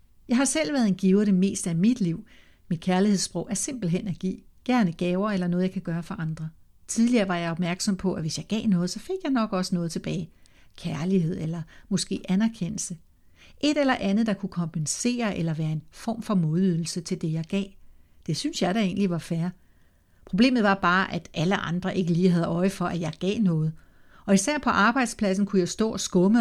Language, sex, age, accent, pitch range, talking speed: Danish, female, 60-79, native, 170-210 Hz, 215 wpm